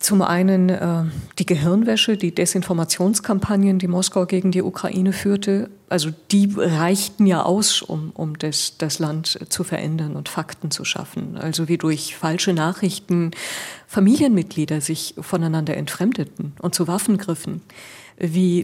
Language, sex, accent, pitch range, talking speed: German, female, German, 170-200 Hz, 135 wpm